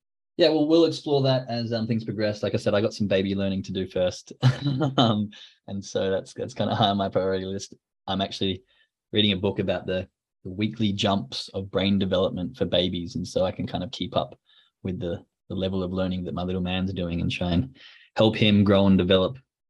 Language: English